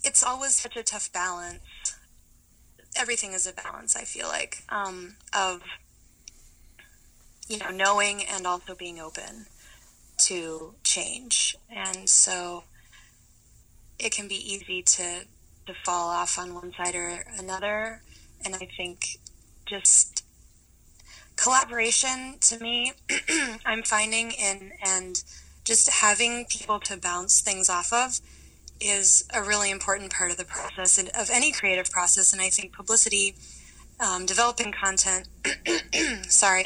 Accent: American